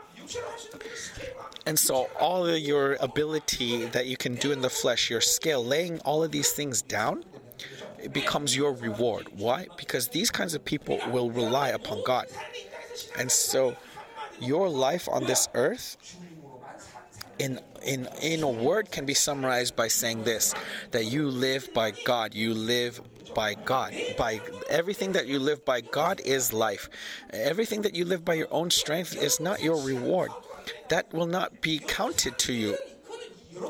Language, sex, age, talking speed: English, male, 30-49, 160 wpm